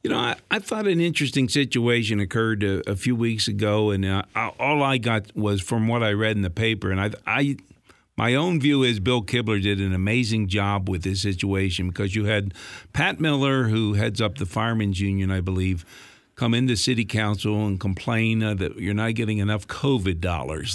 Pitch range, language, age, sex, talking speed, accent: 100-120 Hz, English, 50-69, male, 205 wpm, American